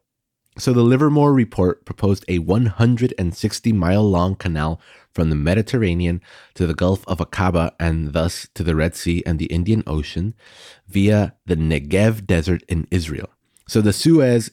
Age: 30-49